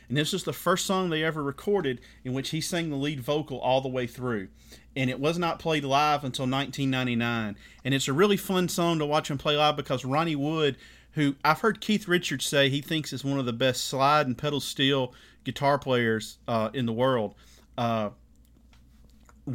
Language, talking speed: English, 205 wpm